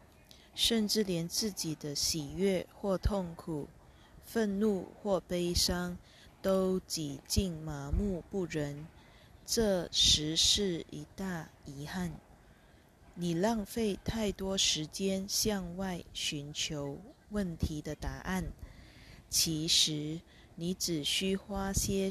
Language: Chinese